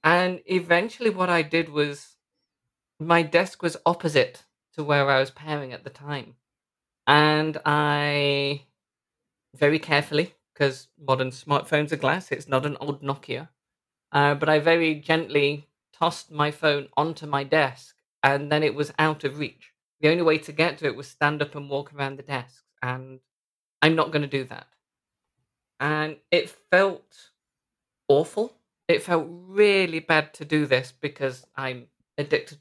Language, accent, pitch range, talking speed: English, British, 140-160 Hz, 160 wpm